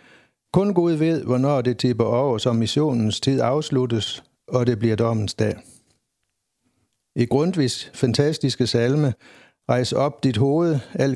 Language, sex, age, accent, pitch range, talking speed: Danish, male, 60-79, native, 120-145 Hz, 135 wpm